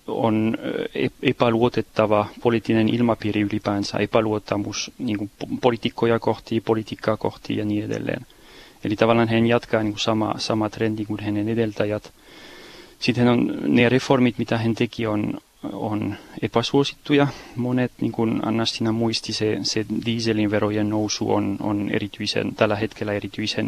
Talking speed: 130 wpm